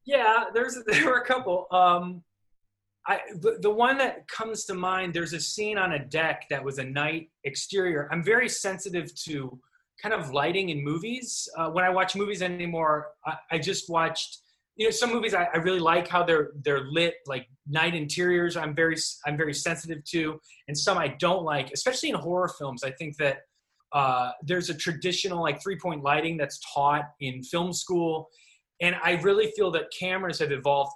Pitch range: 140-180 Hz